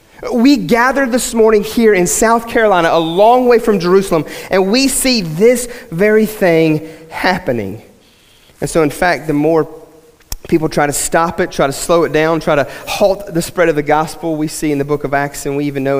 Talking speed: 205 wpm